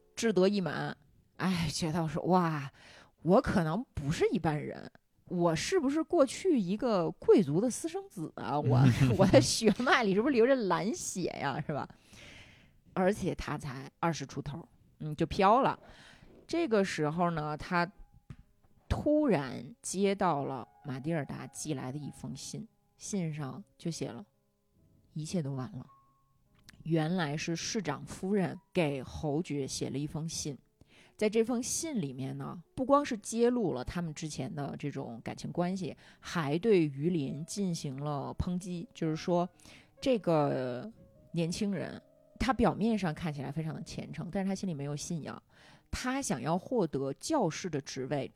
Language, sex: Chinese, female